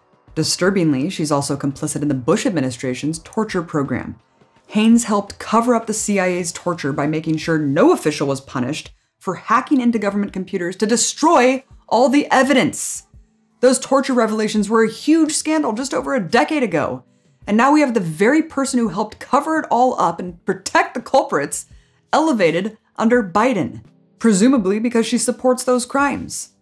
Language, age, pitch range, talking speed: English, 20-39, 145-225 Hz, 160 wpm